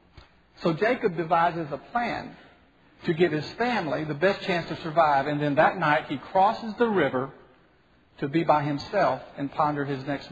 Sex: male